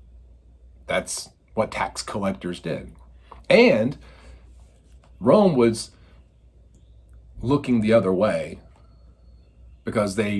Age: 50-69